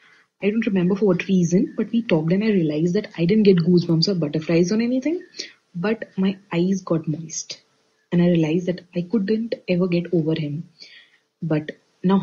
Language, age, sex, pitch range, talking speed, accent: Hindi, 30-49, female, 170-240 Hz, 185 wpm, native